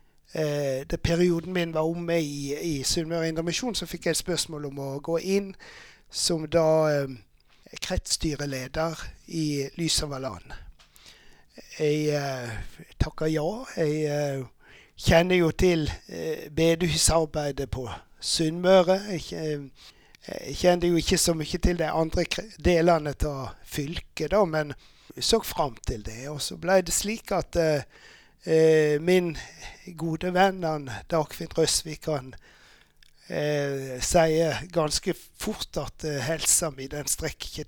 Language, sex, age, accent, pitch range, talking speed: English, male, 60-79, Swedish, 145-170 Hz, 125 wpm